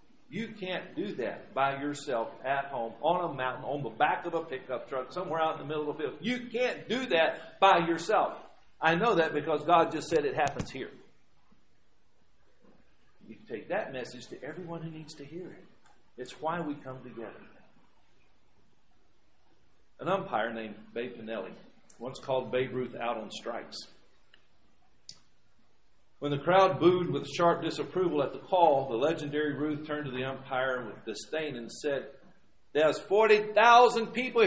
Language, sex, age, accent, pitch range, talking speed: English, male, 50-69, American, 130-170 Hz, 165 wpm